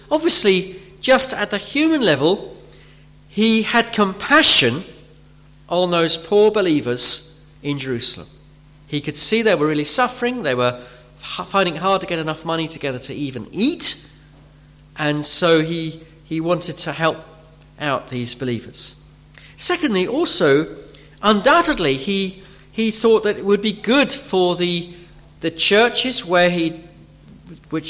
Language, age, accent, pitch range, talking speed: English, 40-59, British, 150-220 Hz, 135 wpm